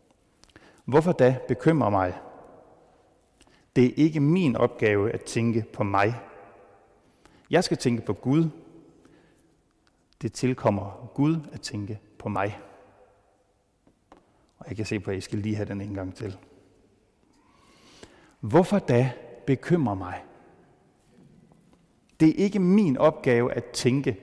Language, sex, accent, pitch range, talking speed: Danish, male, native, 100-130 Hz, 125 wpm